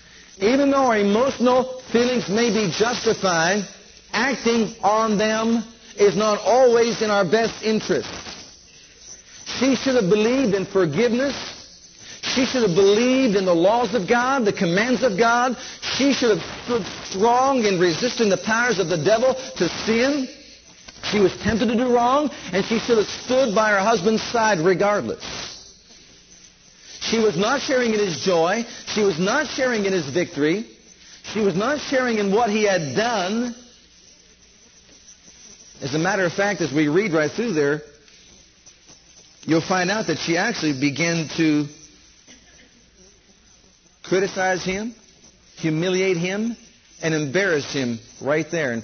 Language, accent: English, American